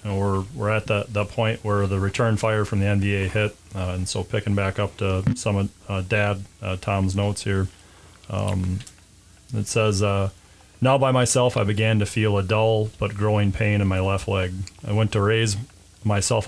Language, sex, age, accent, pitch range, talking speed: English, male, 30-49, American, 100-110 Hz, 200 wpm